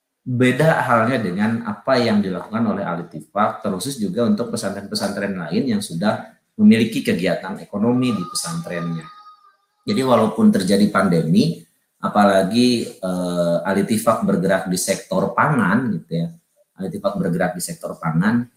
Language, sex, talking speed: Malay, male, 120 wpm